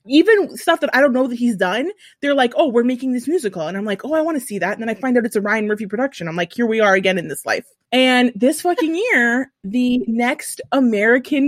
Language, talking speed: English, 265 wpm